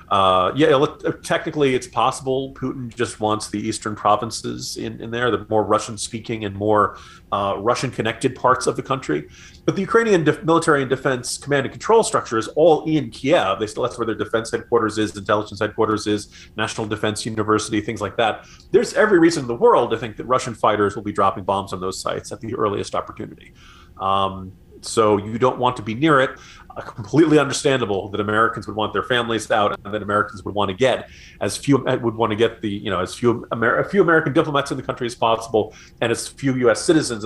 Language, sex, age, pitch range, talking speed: English, male, 30-49, 105-130 Hz, 215 wpm